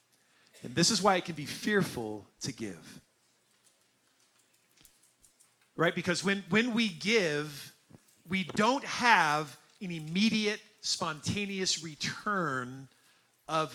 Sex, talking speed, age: male, 105 wpm, 40-59